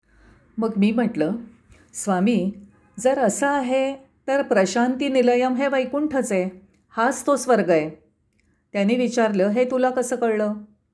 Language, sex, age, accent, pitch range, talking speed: Marathi, female, 40-59, native, 180-245 Hz, 130 wpm